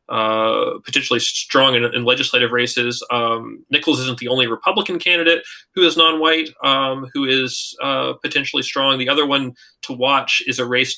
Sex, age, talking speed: male, 20-39, 170 wpm